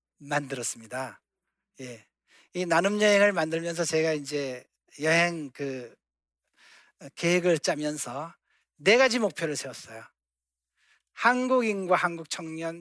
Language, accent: Korean, native